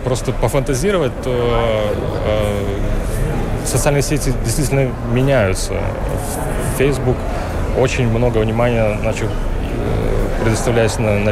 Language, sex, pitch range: Russian, male, 105-130 Hz